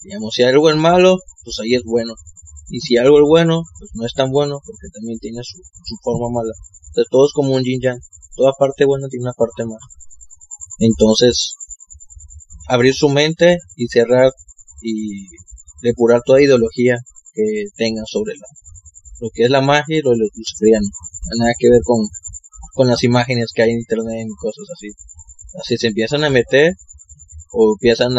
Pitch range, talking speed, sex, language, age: 95-130 Hz, 185 wpm, male, Spanish, 20-39